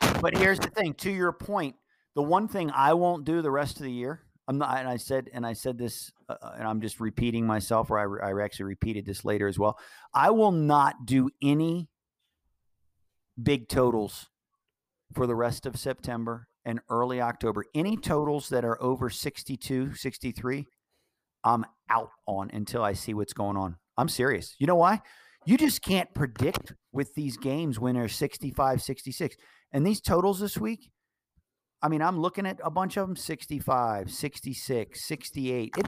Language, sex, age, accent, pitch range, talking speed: English, male, 50-69, American, 120-165 Hz, 175 wpm